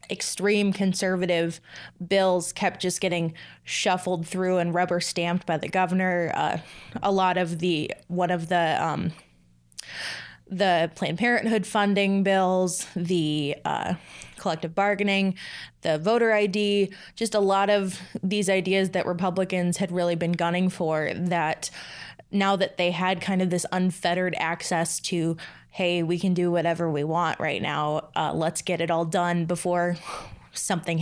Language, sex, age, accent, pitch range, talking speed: English, female, 20-39, American, 170-195 Hz, 145 wpm